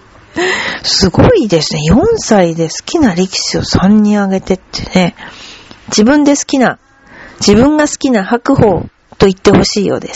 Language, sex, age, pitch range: Japanese, female, 40-59, 185-240 Hz